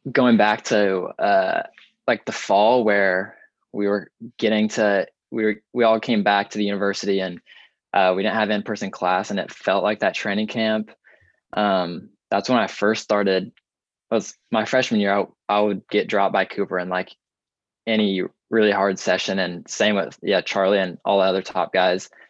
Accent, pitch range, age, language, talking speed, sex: American, 95-110 Hz, 20-39, English, 190 wpm, male